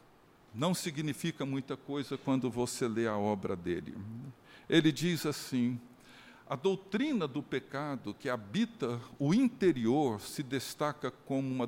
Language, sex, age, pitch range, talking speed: Portuguese, male, 60-79, 125-175 Hz, 130 wpm